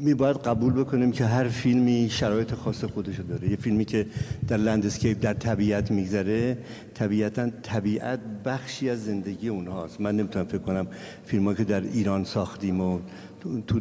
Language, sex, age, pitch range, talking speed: Persian, male, 60-79, 100-120 Hz, 155 wpm